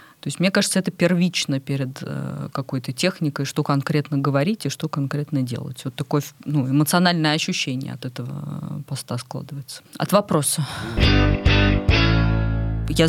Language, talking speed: Russian, 130 wpm